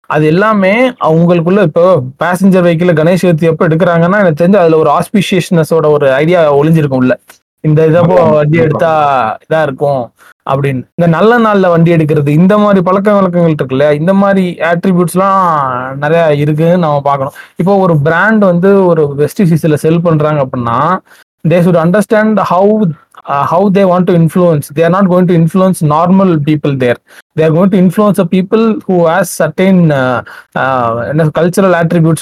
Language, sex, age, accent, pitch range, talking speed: Tamil, male, 30-49, native, 150-185 Hz, 155 wpm